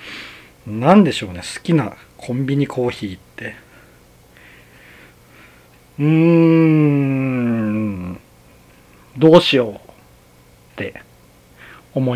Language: Japanese